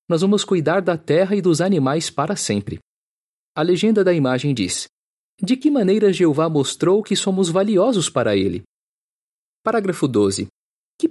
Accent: Brazilian